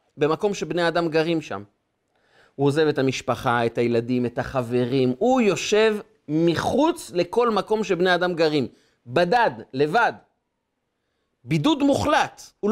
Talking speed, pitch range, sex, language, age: 125 wpm, 150-235 Hz, male, Hebrew, 30-49